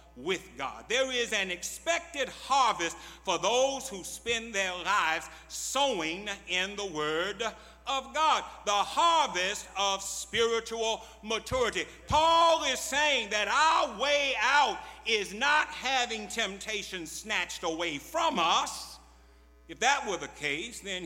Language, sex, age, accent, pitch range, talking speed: English, male, 60-79, American, 160-250 Hz, 130 wpm